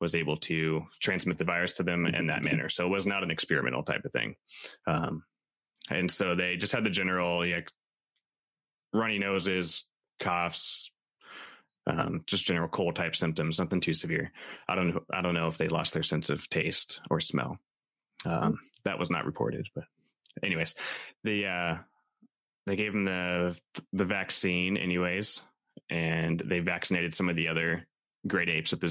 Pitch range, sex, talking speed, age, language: 80-95 Hz, male, 170 wpm, 20-39, English